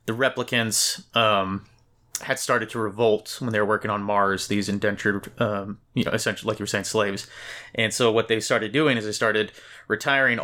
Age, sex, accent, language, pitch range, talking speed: 30-49, male, American, English, 105-120 Hz, 195 wpm